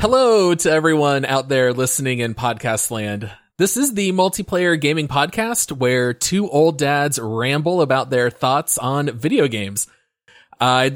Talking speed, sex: 150 wpm, male